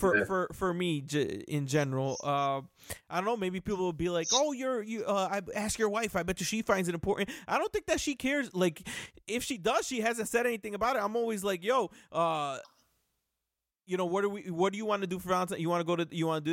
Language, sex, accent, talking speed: English, male, American, 270 wpm